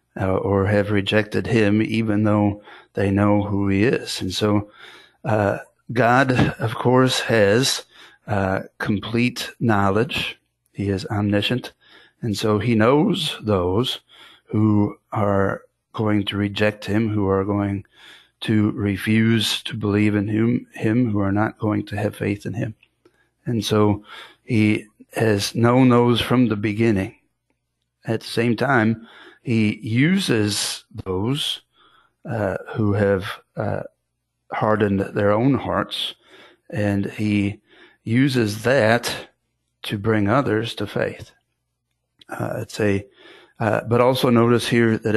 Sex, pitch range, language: male, 100-115 Hz, English